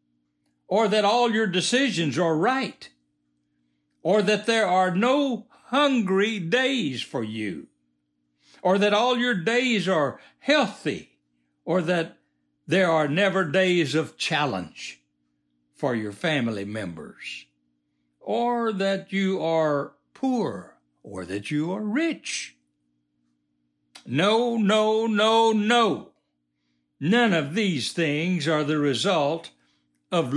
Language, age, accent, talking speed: English, 60-79, American, 115 wpm